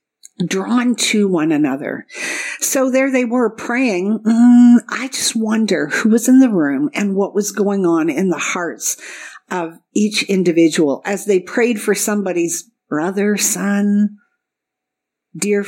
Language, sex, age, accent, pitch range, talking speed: English, female, 50-69, American, 175-230 Hz, 140 wpm